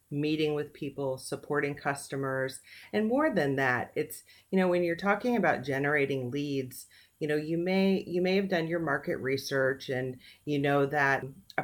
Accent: American